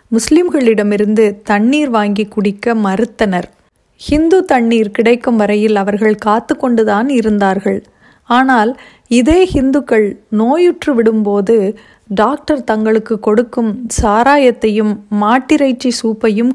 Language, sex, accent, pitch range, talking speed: Tamil, female, native, 210-260 Hz, 80 wpm